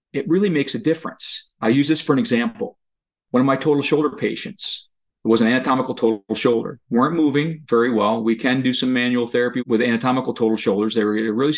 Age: 40-59